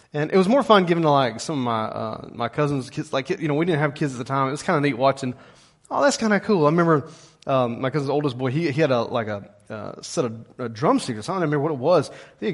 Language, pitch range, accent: English, 135-185 Hz, American